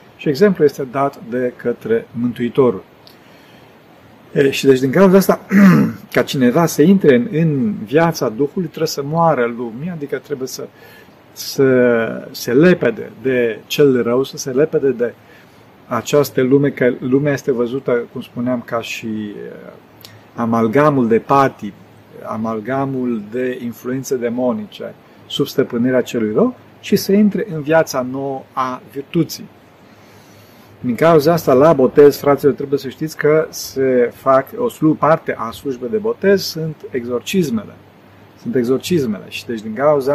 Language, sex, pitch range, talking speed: Romanian, male, 120-160 Hz, 135 wpm